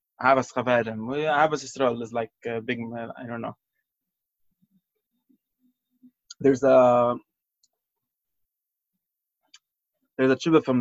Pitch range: 120-150 Hz